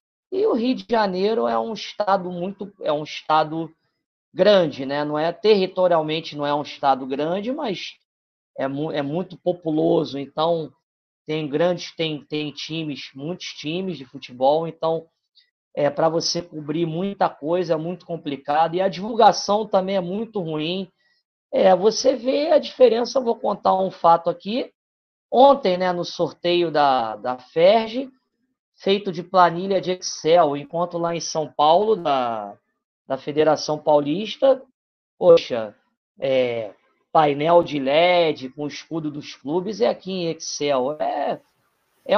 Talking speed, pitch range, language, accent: 145 wpm, 155-210 Hz, Portuguese, Brazilian